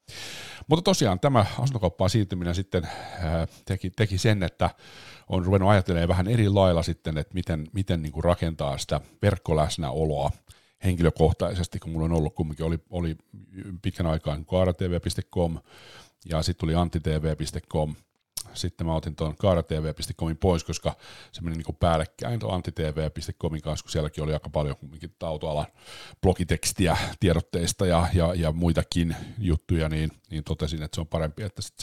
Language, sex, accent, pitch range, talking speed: Finnish, male, native, 80-95 Hz, 145 wpm